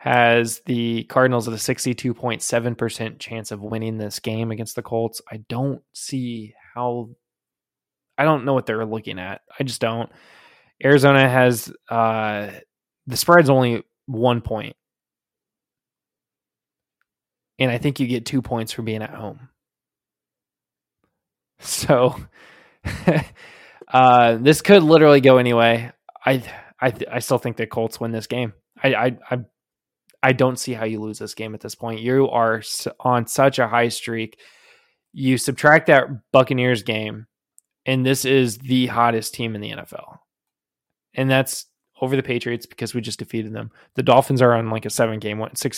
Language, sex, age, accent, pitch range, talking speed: English, male, 20-39, American, 115-130 Hz, 155 wpm